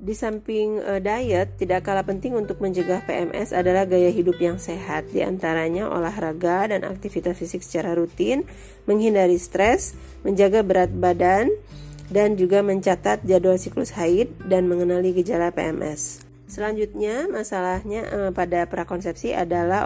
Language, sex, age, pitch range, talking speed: Indonesian, female, 30-49, 175-205 Hz, 135 wpm